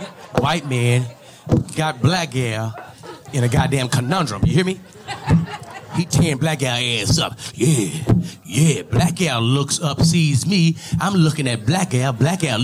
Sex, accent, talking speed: male, American, 155 wpm